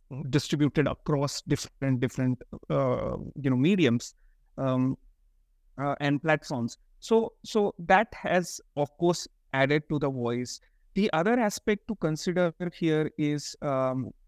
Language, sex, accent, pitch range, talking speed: English, male, Indian, 135-170 Hz, 125 wpm